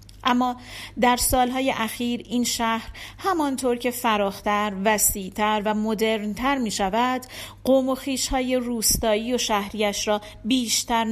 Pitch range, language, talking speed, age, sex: 210-255 Hz, Persian, 115 wpm, 40-59, female